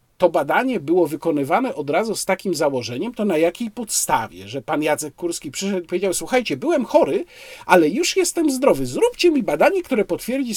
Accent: native